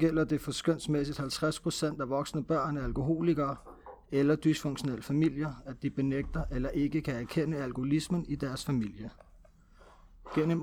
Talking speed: 135 wpm